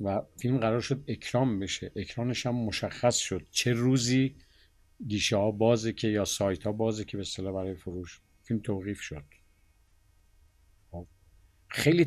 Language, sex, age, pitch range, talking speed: Persian, male, 50-69, 90-110 Hz, 140 wpm